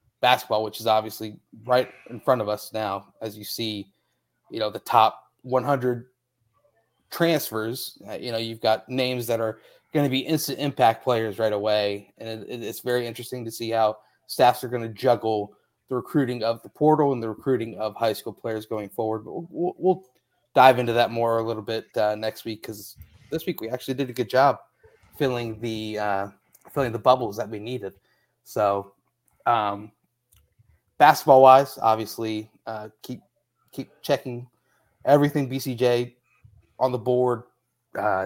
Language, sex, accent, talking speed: English, male, American, 165 wpm